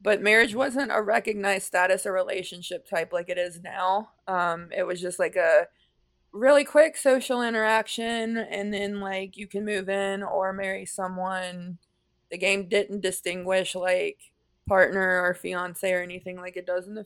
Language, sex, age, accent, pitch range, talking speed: English, female, 20-39, American, 180-205 Hz, 170 wpm